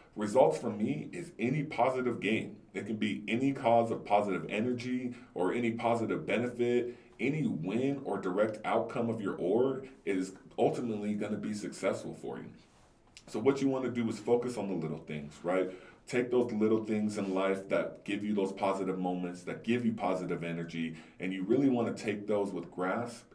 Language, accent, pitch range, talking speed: English, American, 90-115 Hz, 190 wpm